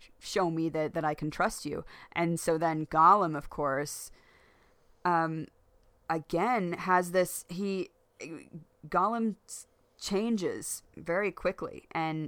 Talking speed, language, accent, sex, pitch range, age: 115 wpm, English, American, female, 155-180 Hz, 30-49